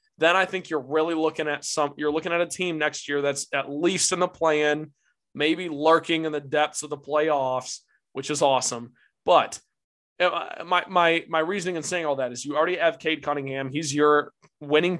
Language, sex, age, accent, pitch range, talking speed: English, male, 20-39, American, 145-180 Hz, 200 wpm